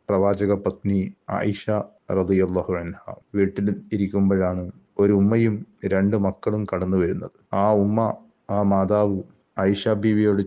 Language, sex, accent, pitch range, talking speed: Malayalam, male, native, 95-105 Hz, 105 wpm